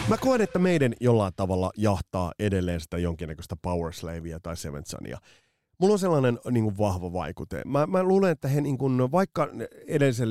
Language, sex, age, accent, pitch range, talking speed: Finnish, male, 30-49, native, 100-135 Hz, 170 wpm